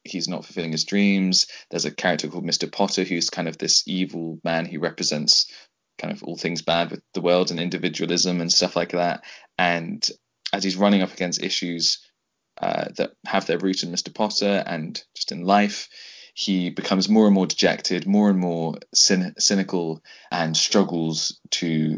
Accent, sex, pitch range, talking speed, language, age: British, male, 85-100 Hz, 175 wpm, English, 20-39